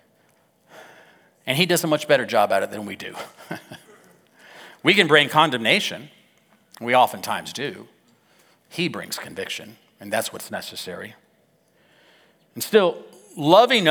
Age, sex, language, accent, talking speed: 50-69, male, English, American, 125 wpm